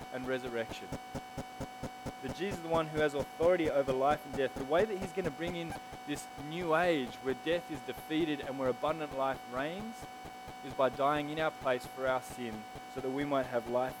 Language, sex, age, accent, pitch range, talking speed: English, male, 20-39, Australian, 125-175 Hz, 210 wpm